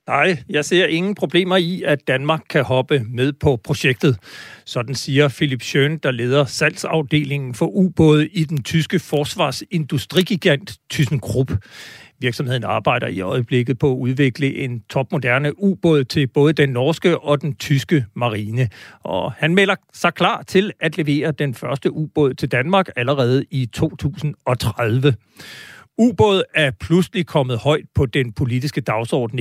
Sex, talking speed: male, 145 wpm